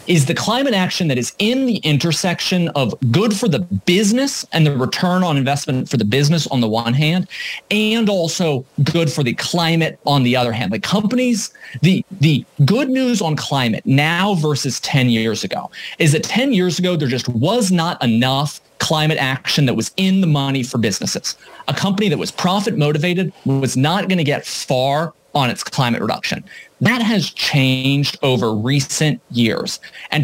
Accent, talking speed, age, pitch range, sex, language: American, 175 wpm, 30-49, 130-185 Hz, male, English